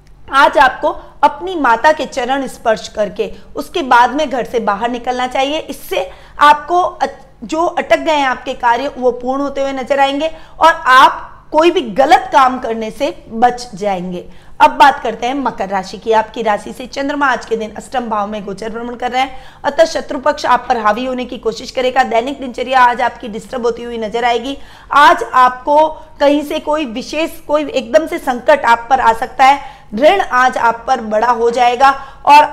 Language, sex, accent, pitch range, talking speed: Hindi, female, native, 235-285 Hz, 190 wpm